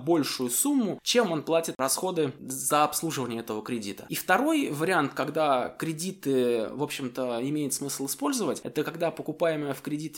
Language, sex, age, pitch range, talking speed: Russian, male, 20-39, 130-170 Hz, 145 wpm